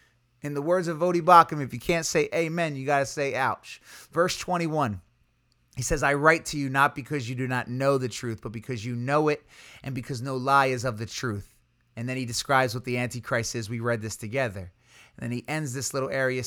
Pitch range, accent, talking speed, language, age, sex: 125-165 Hz, American, 230 wpm, English, 30-49, male